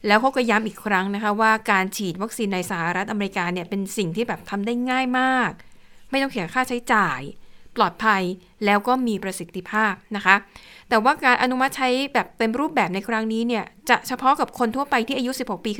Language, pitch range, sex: Thai, 195-235 Hz, female